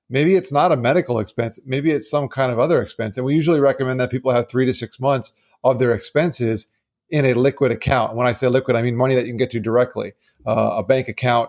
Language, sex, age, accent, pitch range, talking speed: English, male, 30-49, American, 115-135 Hz, 255 wpm